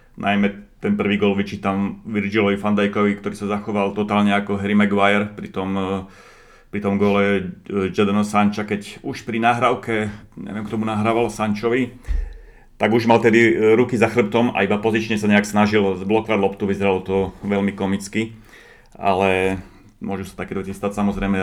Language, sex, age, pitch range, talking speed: Slovak, male, 30-49, 95-110 Hz, 160 wpm